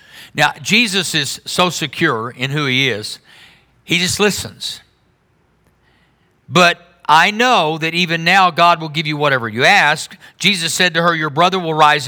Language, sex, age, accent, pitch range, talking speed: English, male, 50-69, American, 150-185 Hz, 165 wpm